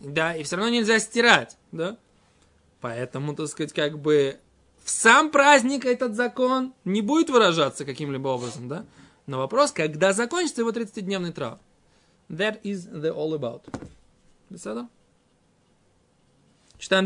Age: 20-39